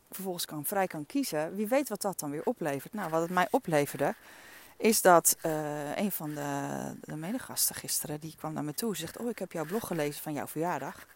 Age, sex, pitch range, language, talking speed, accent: 40-59, female, 160-240 Hz, Dutch, 225 wpm, Dutch